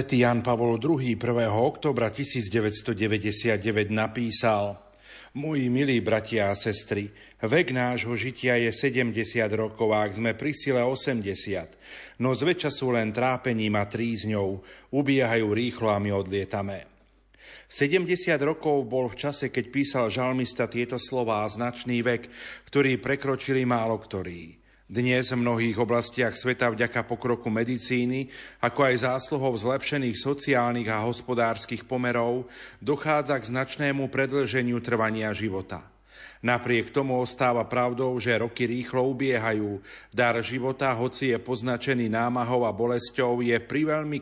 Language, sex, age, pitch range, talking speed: Slovak, male, 40-59, 110-130 Hz, 125 wpm